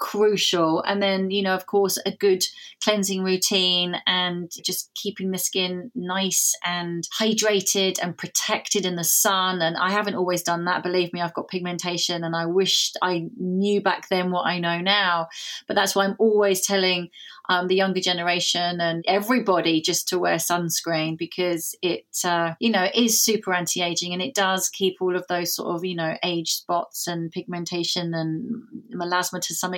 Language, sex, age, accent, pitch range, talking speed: English, female, 30-49, British, 175-195 Hz, 180 wpm